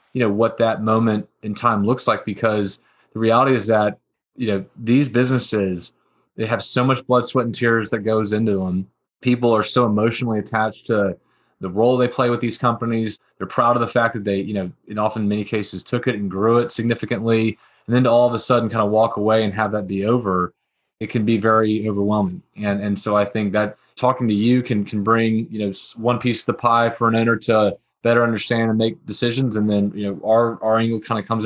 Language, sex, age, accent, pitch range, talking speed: English, male, 20-39, American, 105-120 Hz, 230 wpm